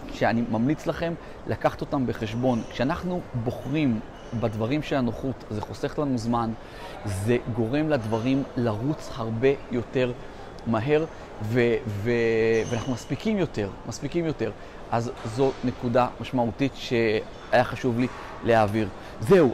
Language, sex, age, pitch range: Hebrew, male, 30-49, 115-135 Hz